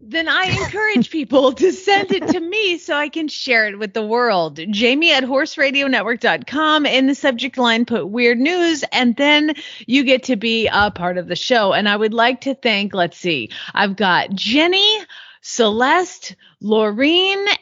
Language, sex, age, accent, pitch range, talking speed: English, female, 30-49, American, 210-290 Hz, 175 wpm